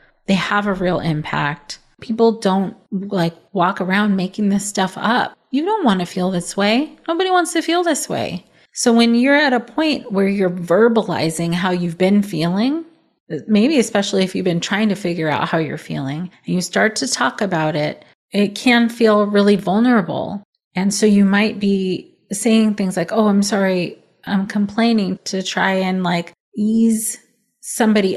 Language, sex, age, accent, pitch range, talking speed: English, female, 30-49, American, 175-215 Hz, 175 wpm